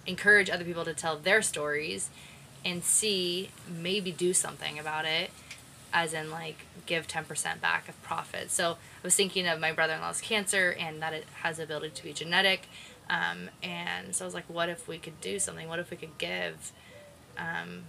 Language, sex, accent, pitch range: English, female, American, 155-175 Hz